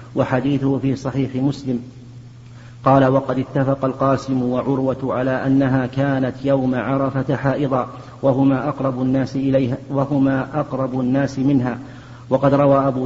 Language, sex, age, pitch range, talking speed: Arabic, male, 40-59, 130-135 Hz, 105 wpm